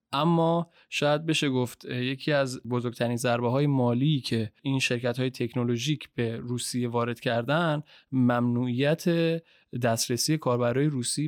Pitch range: 125-150 Hz